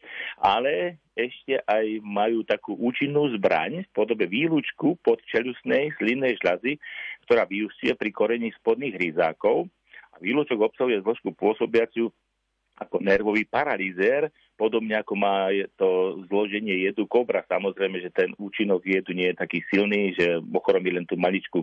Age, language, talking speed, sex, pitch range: 40-59, Slovak, 135 wpm, male, 95-115 Hz